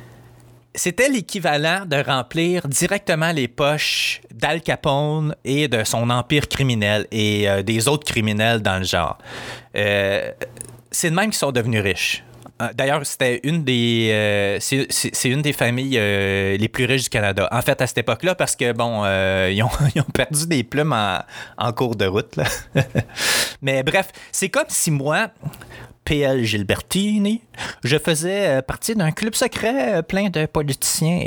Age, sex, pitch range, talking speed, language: 30-49, male, 115-165 Hz, 165 wpm, French